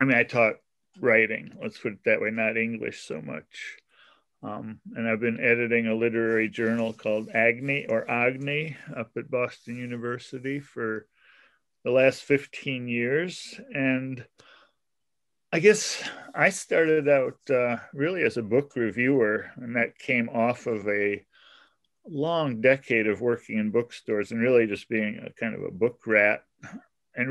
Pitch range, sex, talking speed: 110-130 Hz, male, 155 wpm